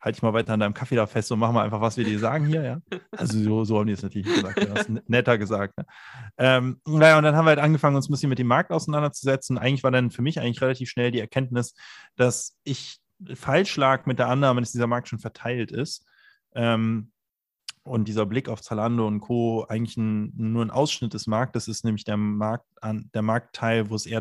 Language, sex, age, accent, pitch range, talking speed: German, male, 20-39, German, 110-130 Hz, 235 wpm